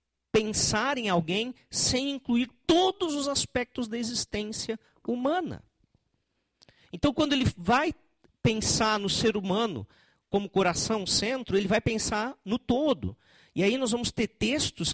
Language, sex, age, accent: Portuguese, male, 50-69, Brazilian